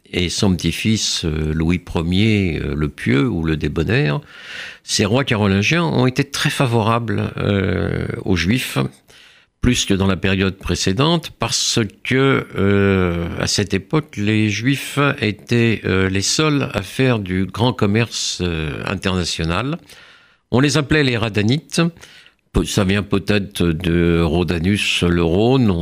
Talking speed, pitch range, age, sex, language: 135 wpm, 85-115 Hz, 60-79, male, French